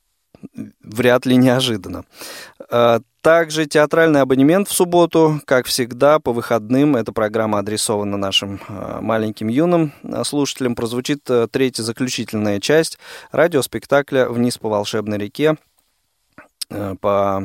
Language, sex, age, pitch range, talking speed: Russian, male, 20-39, 110-140 Hz, 100 wpm